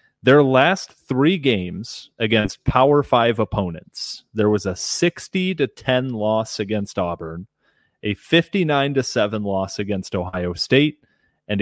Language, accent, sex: English, American, male